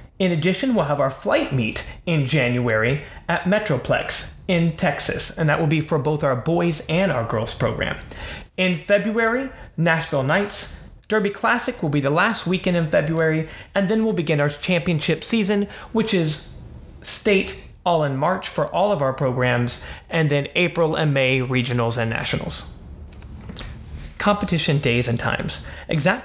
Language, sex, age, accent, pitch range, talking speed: English, male, 30-49, American, 130-175 Hz, 160 wpm